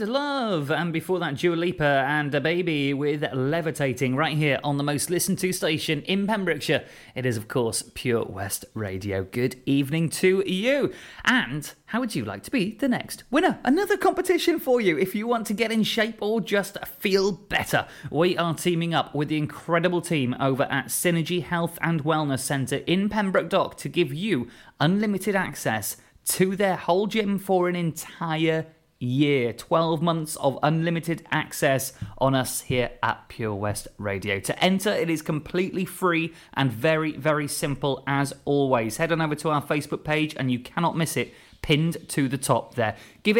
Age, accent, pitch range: 30-49, British, 135-180 Hz